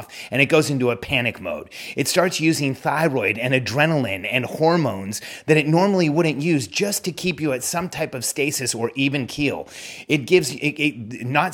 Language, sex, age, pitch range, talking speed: English, male, 30-49, 135-165 Hz, 190 wpm